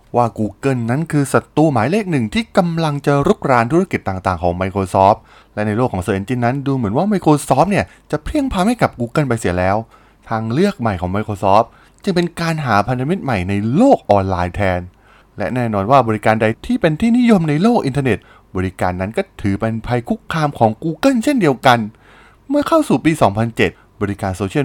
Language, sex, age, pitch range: Thai, male, 20-39, 100-160 Hz